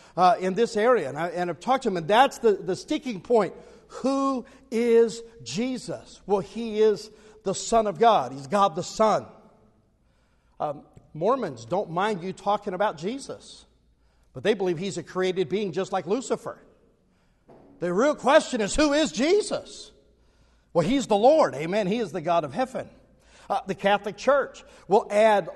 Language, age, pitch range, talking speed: English, 50-69, 180-230 Hz, 170 wpm